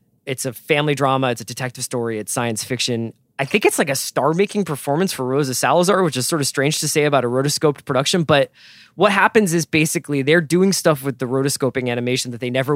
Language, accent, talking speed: English, American, 220 wpm